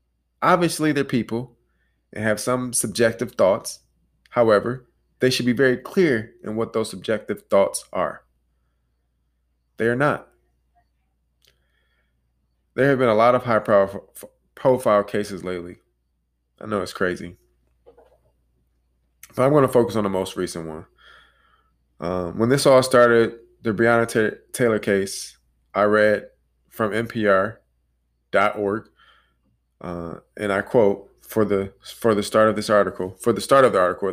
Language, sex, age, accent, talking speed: English, male, 20-39, American, 140 wpm